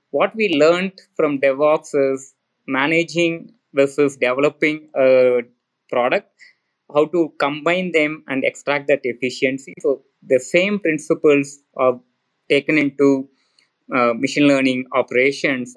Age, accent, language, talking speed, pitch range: 20-39, Indian, English, 115 wpm, 130-150 Hz